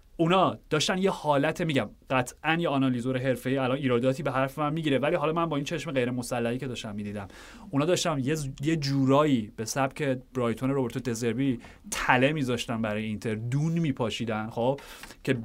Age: 30-49